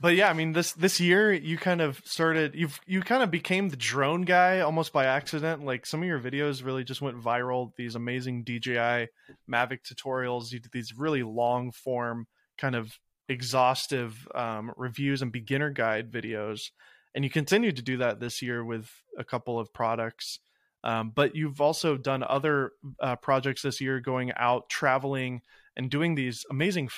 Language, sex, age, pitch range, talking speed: English, male, 20-39, 120-150 Hz, 180 wpm